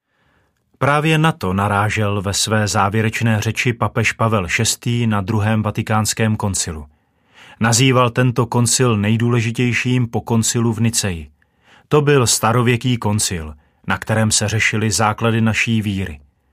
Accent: native